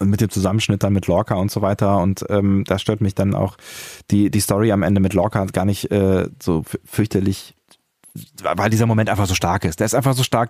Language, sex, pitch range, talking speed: German, male, 100-120 Hz, 235 wpm